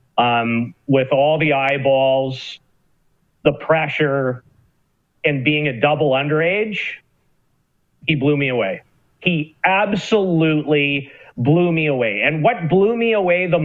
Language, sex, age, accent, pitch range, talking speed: English, male, 40-59, American, 145-190 Hz, 120 wpm